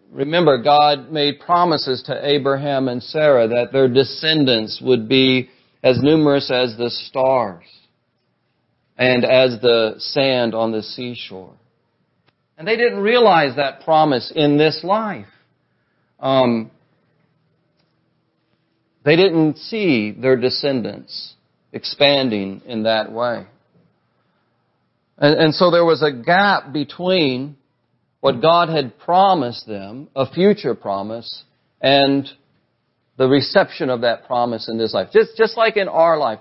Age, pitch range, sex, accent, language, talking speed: 40-59, 125-175 Hz, male, American, English, 125 wpm